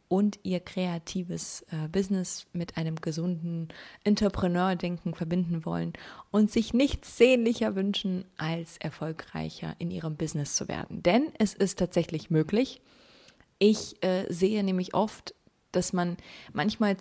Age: 20-39